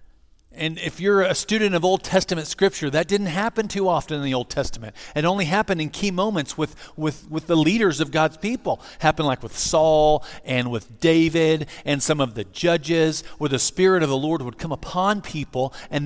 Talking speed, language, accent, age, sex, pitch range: 205 wpm, English, American, 40-59, male, 135-200 Hz